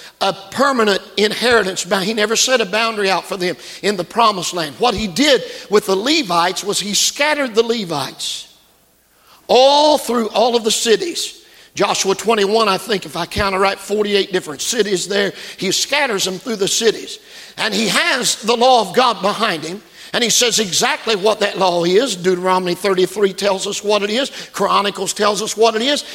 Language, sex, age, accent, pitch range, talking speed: English, male, 50-69, American, 195-260 Hz, 185 wpm